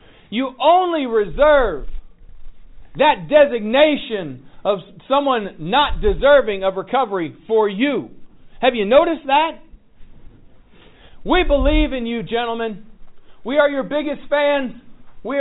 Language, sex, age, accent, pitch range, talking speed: English, male, 50-69, American, 210-285 Hz, 110 wpm